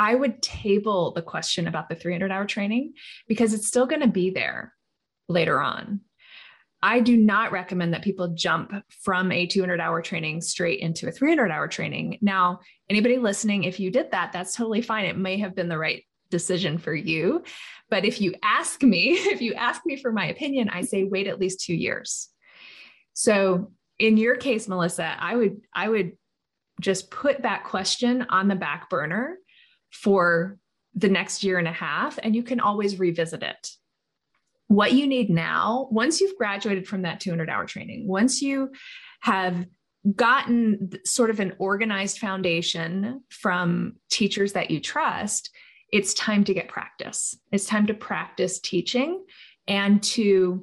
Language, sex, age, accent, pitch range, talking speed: English, female, 20-39, American, 180-230 Hz, 170 wpm